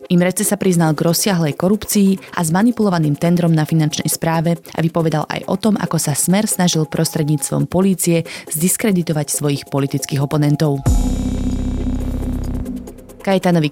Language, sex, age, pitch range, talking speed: Slovak, female, 20-39, 150-185 Hz, 120 wpm